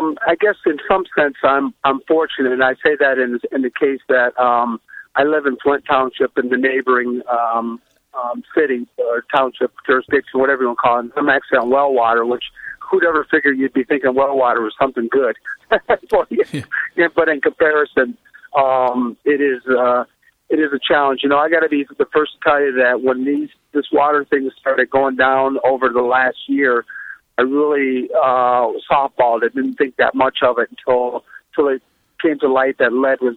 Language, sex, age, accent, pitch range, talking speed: English, male, 50-69, American, 125-150 Hz, 200 wpm